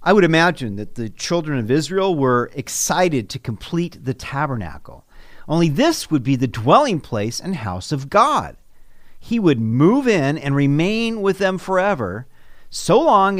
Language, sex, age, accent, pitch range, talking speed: English, male, 50-69, American, 125-185 Hz, 160 wpm